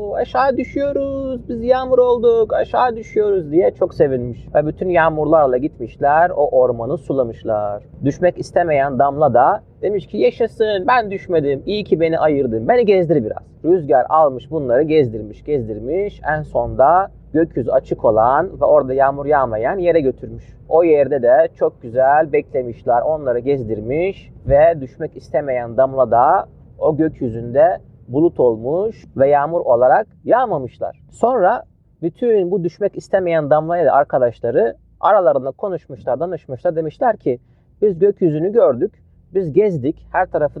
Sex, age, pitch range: male, 30-49, 135-225 Hz